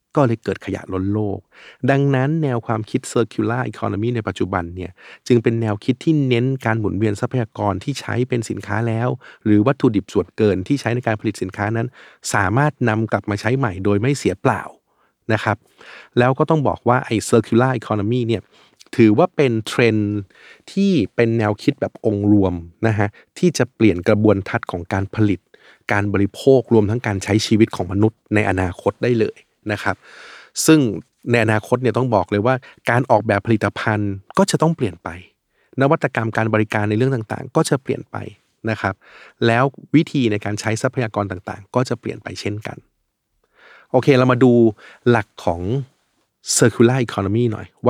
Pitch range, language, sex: 105-125 Hz, Thai, male